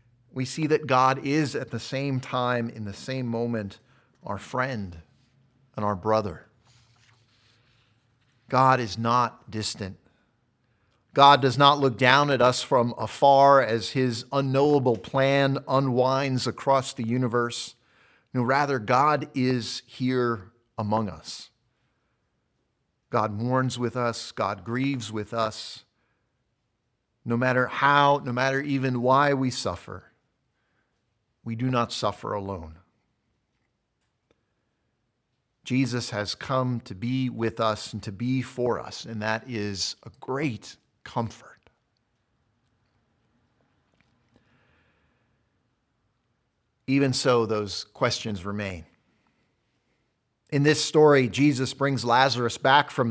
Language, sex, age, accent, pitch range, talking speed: English, male, 50-69, American, 115-130 Hz, 110 wpm